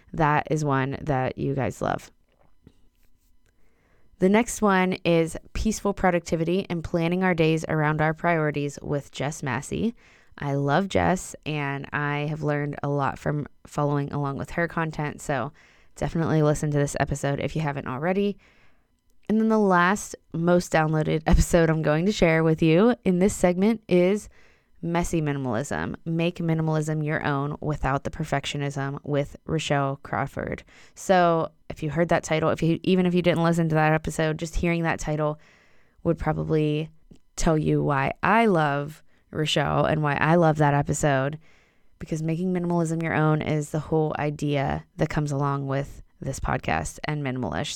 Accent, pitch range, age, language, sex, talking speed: American, 140-170 Hz, 20-39, English, female, 160 wpm